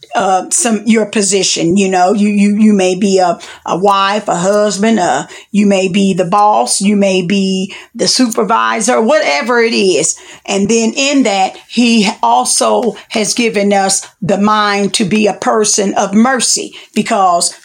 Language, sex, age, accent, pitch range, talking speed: English, female, 40-59, American, 195-240 Hz, 165 wpm